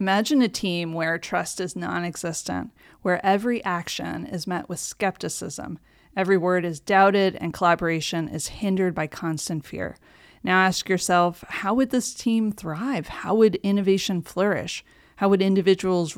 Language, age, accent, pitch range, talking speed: English, 30-49, American, 170-200 Hz, 150 wpm